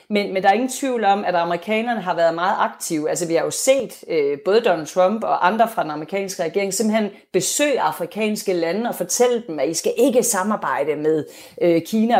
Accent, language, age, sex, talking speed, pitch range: native, Danish, 40-59, female, 200 wpm, 170-225 Hz